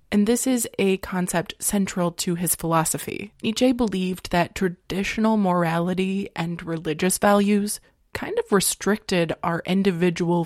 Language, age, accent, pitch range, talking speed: English, 20-39, American, 170-205 Hz, 125 wpm